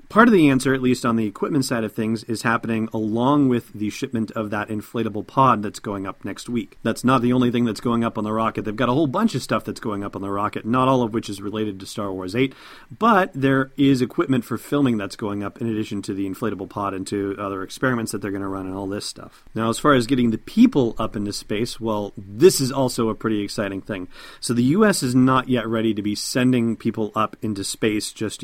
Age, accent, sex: 40-59, American, male